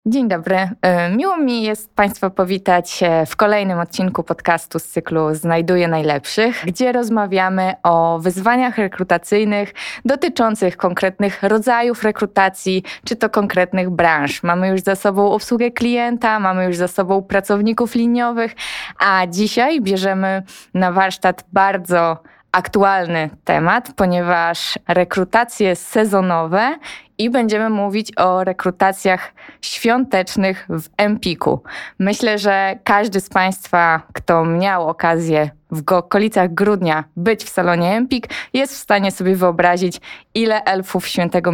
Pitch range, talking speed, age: 175-210 Hz, 120 wpm, 20-39